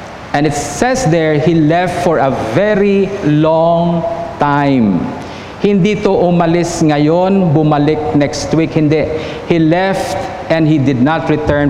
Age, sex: 50-69, male